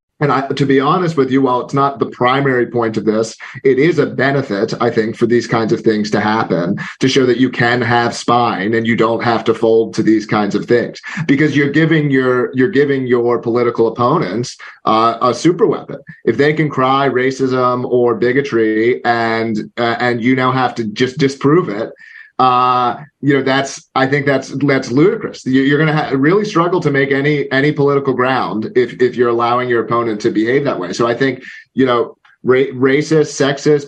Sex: male